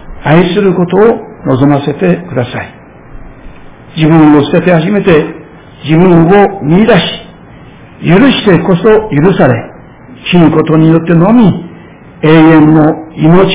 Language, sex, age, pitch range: Japanese, male, 60-79, 130-170 Hz